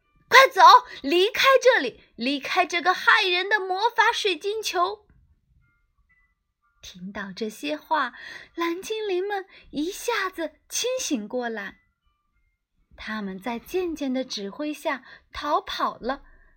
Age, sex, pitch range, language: 20-39, female, 235-370 Hz, Chinese